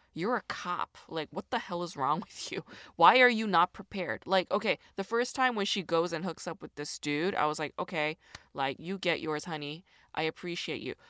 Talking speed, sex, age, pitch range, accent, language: 225 wpm, female, 20-39, 165-225 Hz, American, English